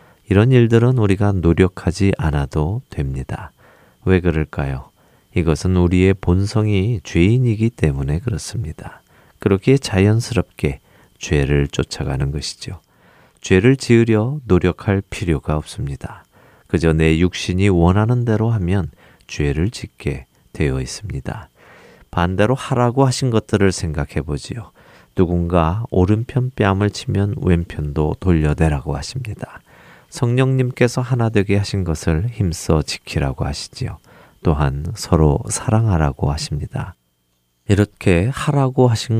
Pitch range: 80-110 Hz